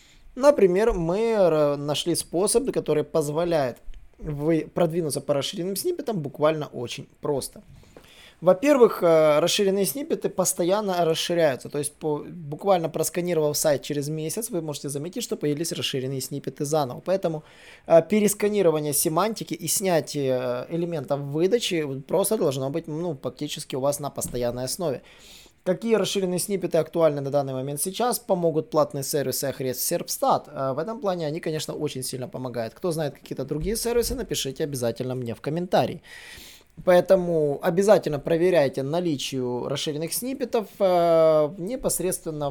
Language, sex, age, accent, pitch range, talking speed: Russian, male, 20-39, native, 145-185 Hz, 125 wpm